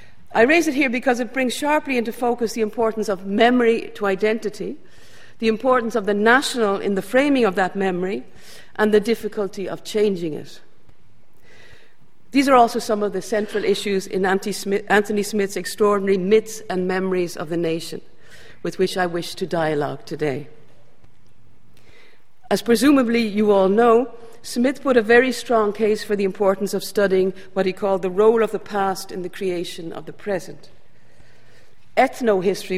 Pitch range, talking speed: 195-230 Hz, 165 wpm